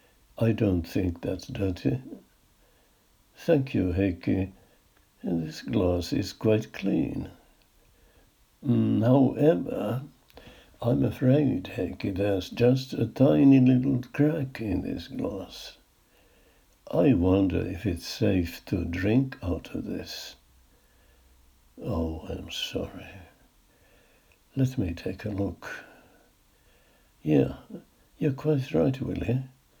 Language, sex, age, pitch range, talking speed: Finnish, male, 60-79, 90-115 Hz, 100 wpm